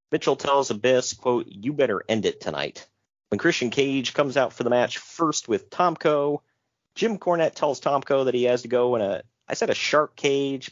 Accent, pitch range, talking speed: American, 115-150 Hz, 215 wpm